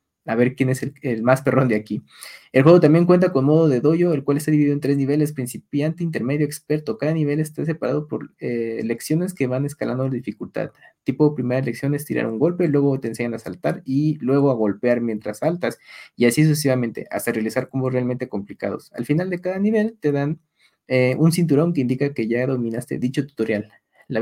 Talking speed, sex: 210 wpm, male